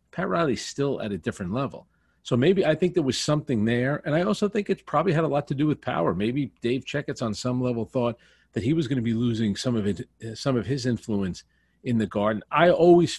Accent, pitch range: American, 110-145 Hz